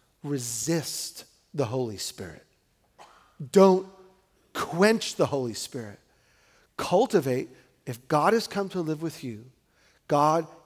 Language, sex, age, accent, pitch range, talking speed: English, male, 40-59, American, 130-175 Hz, 105 wpm